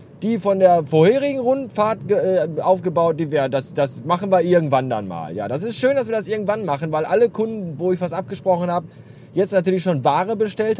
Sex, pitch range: male, 155-225 Hz